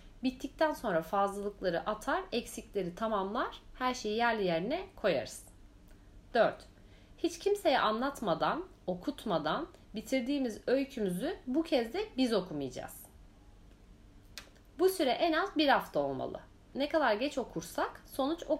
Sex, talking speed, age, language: female, 115 wpm, 40-59, Turkish